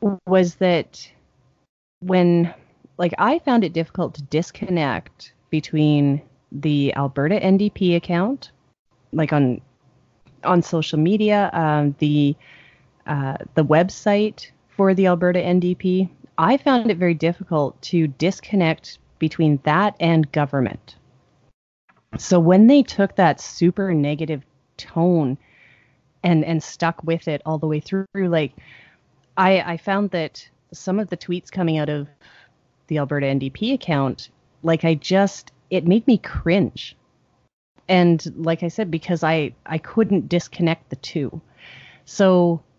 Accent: American